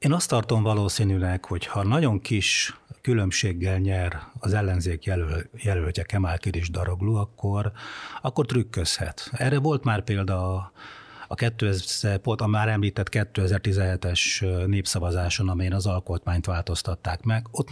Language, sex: Hungarian, male